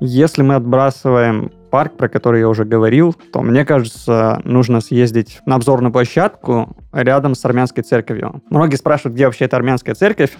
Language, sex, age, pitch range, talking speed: Russian, male, 20-39, 120-145 Hz, 160 wpm